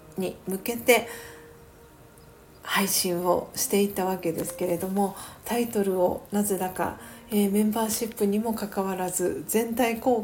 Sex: female